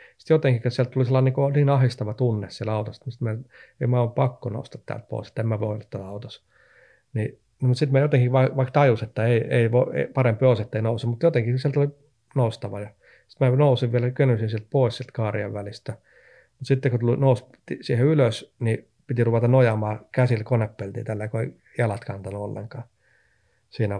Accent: native